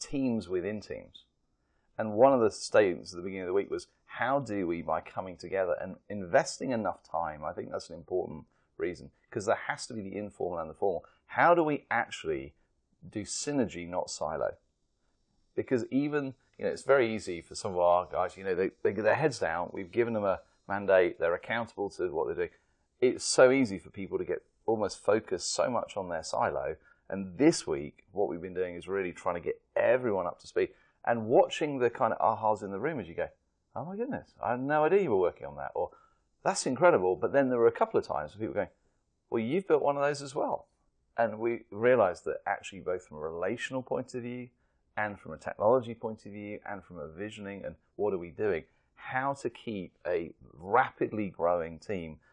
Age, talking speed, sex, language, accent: 30-49, 220 wpm, male, English, British